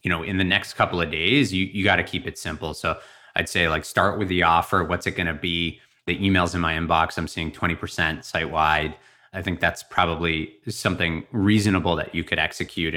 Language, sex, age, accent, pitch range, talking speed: English, male, 30-49, American, 85-100 Hz, 215 wpm